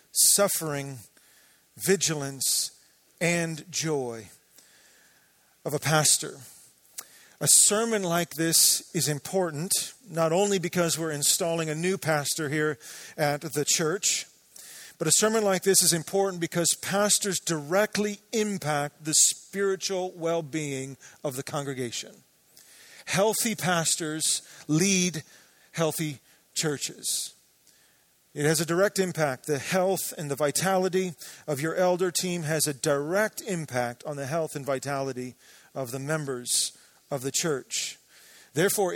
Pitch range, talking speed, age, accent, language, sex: 145-185 Hz, 120 wpm, 40-59, American, English, male